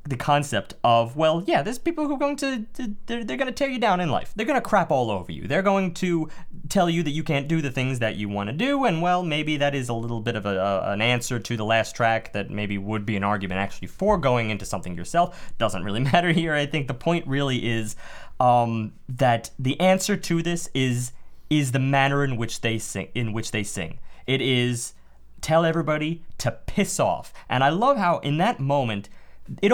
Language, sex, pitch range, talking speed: English, male, 115-170 Hz, 230 wpm